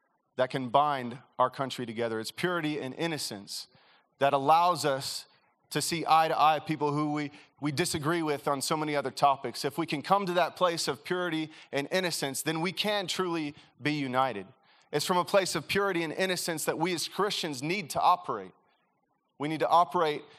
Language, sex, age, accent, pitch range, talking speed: English, male, 30-49, American, 145-175 Hz, 190 wpm